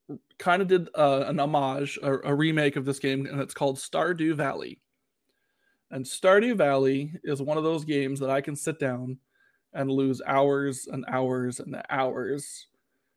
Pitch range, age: 135-150 Hz, 20-39